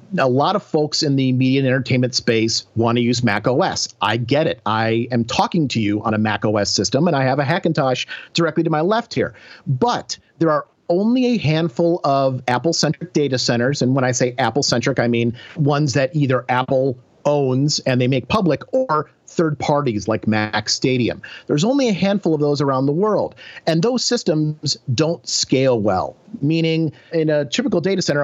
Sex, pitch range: male, 125-170 Hz